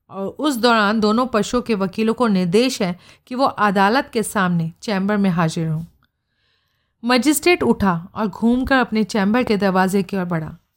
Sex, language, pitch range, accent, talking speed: female, Hindi, 185-220 Hz, native, 160 wpm